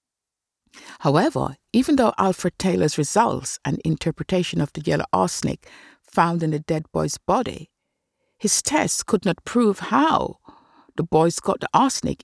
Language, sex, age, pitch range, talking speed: English, female, 60-79, 170-265 Hz, 140 wpm